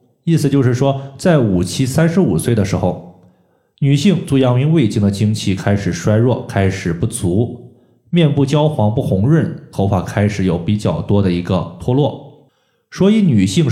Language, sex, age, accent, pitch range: Chinese, male, 20-39, native, 100-130 Hz